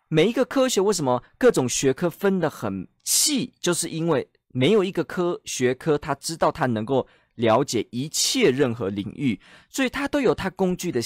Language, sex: Chinese, male